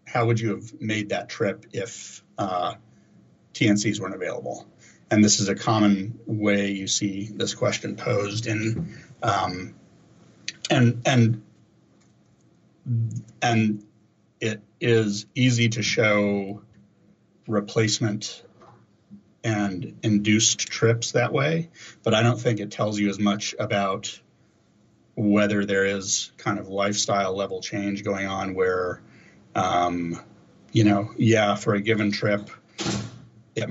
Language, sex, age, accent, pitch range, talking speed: English, male, 40-59, American, 100-115 Hz, 125 wpm